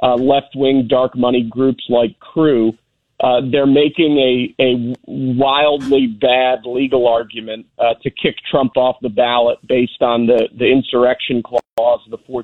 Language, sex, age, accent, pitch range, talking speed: English, male, 40-59, American, 120-135 Hz, 150 wpm